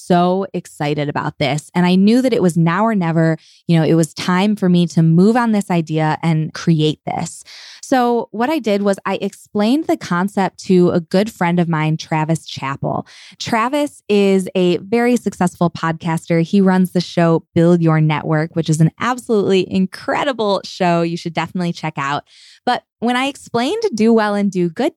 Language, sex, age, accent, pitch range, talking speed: English, female, 20-39, American, 165-215 Hz, 185 wpm